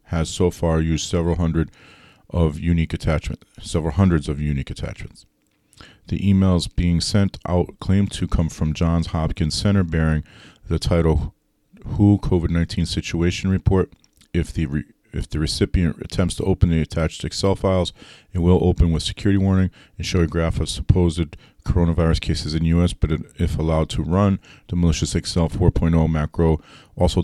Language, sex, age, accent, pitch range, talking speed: English, male, 30-49, American, 80-90 Hz, 165 wpm